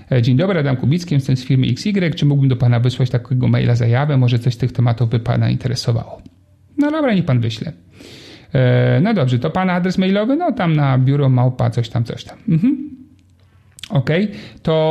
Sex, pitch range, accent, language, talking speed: male, 120-175 Hz, native, Polish, 195 wpm